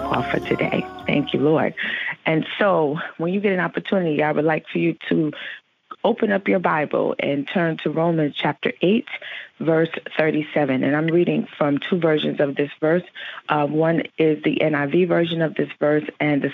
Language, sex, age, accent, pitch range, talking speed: English, female, 40-59, American, 150-180 Hz, 185 wpm